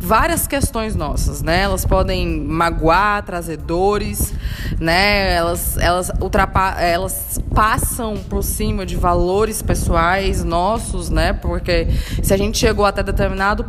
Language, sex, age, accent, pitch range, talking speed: Portuguese, female, 20-39, Brazilian, 180-245 Hz, 125 wpm